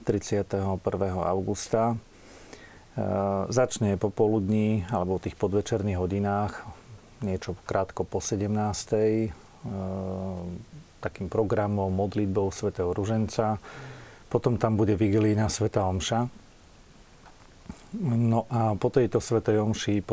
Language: Slovak